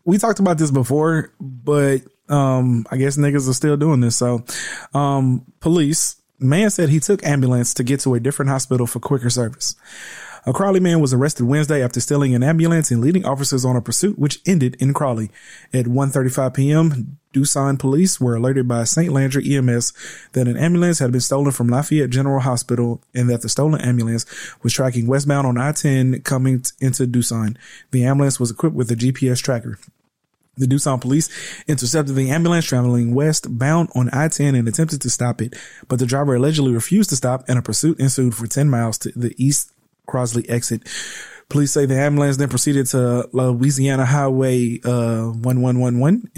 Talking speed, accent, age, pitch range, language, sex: 180 wpm, American, 30-49, 125-145 Hz, English, male